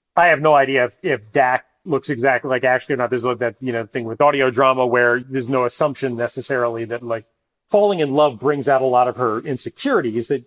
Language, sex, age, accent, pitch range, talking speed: English, male, 30-49, American, 120-140 Hz, 230 wpm